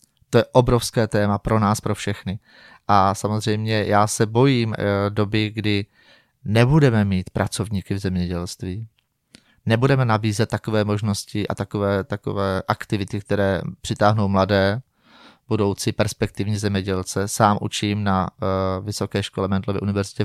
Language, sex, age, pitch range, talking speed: Czech, male, 20-39, 100-110 Hz, 120 wpm